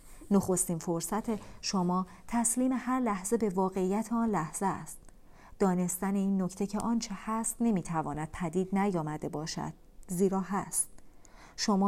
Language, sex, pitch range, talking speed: Persian, female, 180-225 Hz, 125 wpm